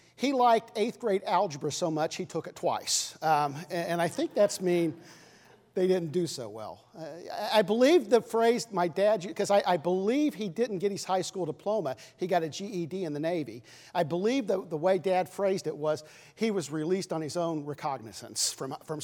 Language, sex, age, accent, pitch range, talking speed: English, male, 50-69, American, 160-225 Hz, 210 wpm